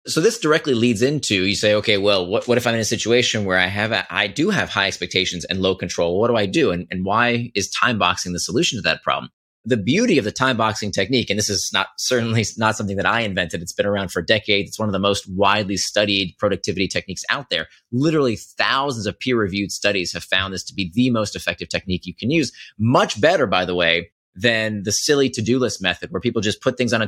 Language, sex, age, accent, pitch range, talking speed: English, male, 30-49, American, 95-125 Hz, 250 wpm